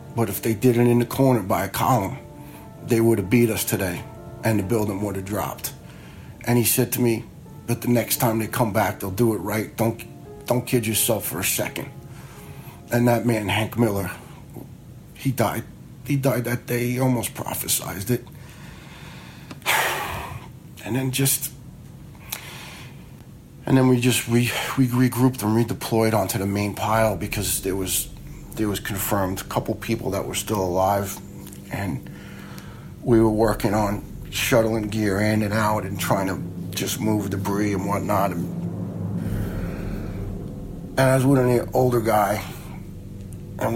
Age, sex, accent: 40-59, male, American